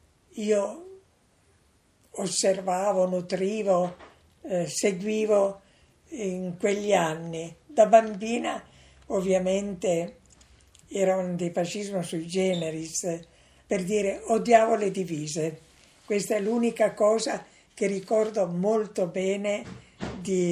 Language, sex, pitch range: Italian, female, 180-220 Hz